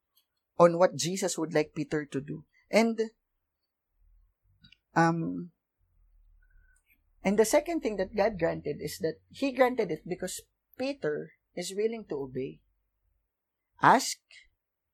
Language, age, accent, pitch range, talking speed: English, 20-39, Filipino, 150-230 Hz, 115 wpm